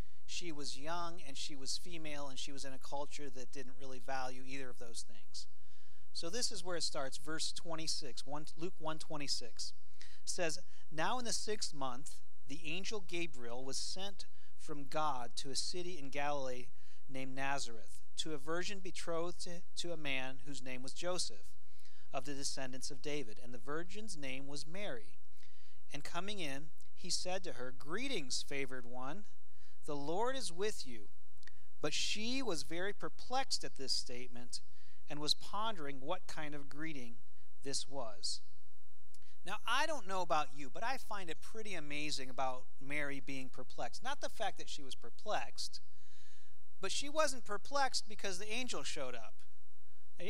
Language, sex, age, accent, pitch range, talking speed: English, male, 40-59, American, 125-180 Hz, 165 wpm